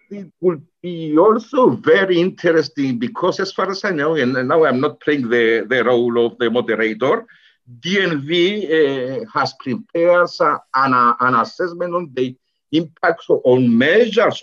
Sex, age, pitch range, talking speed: male, 60-79, 130-195 Hz, 150 wpm